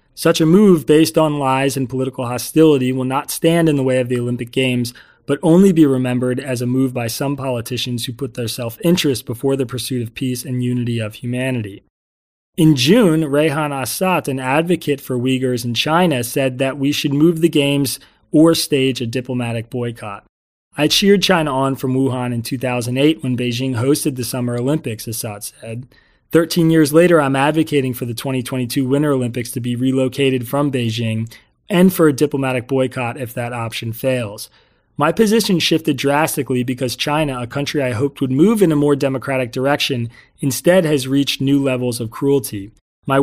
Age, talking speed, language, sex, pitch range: 30-49, 180 wpm, English, male, 125-150 Hz